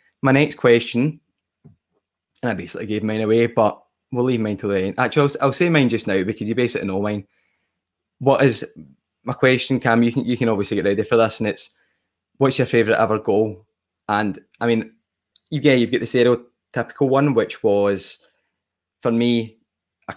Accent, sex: British, male